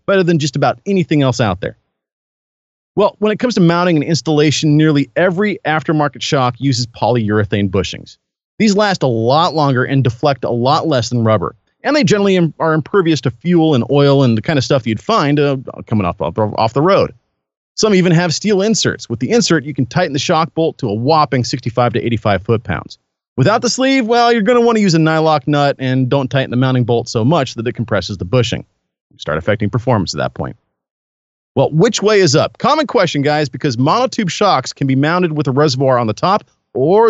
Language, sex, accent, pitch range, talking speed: English, male, American, 120-170 Hz, 215 wpm